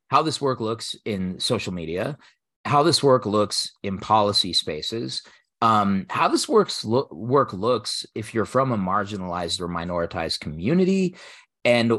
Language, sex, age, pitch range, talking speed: English, male, 30-49, 90-120 Hz, 140 wpm